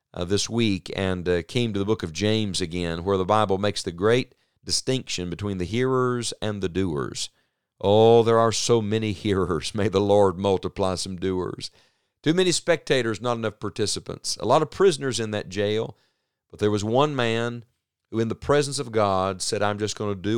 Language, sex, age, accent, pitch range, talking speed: English, male, 40-59, American, 95-115 Hz, 195 wpm